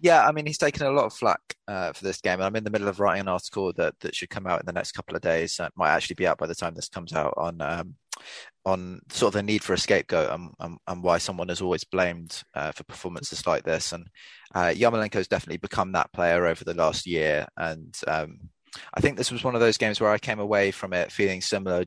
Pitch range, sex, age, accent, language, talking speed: 90-110 Hz, male, 20-39, British, English, 265 wpm